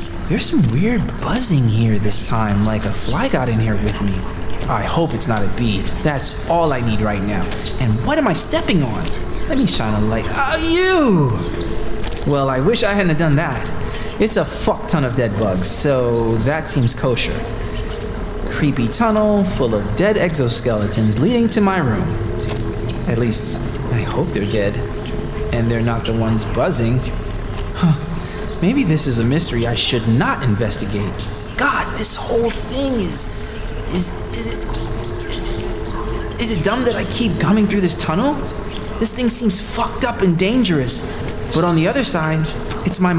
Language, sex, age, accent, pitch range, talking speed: English, male, 20-39, American, 105-155 Hz, 165 wpm